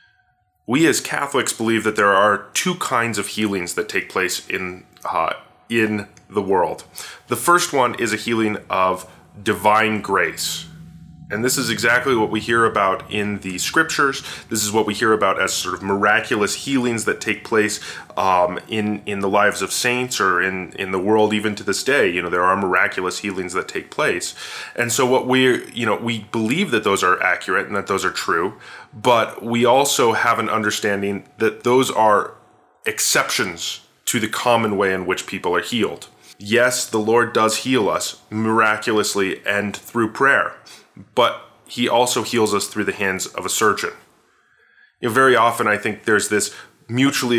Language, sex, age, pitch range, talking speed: English, male, 20-39, 100-120 Hz, 180 wpm